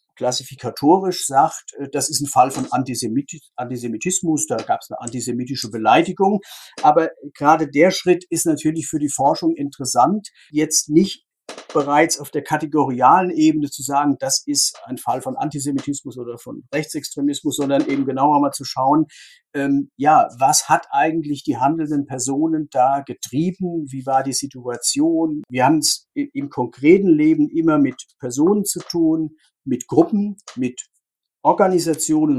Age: 50-69